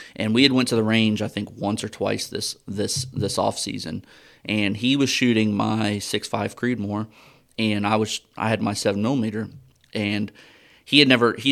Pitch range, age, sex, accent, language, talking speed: 105-130 Hz, 30-49, male, American, English, 200 wpm